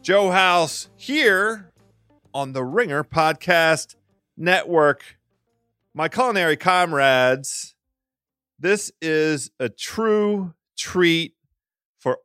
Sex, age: male, 40-59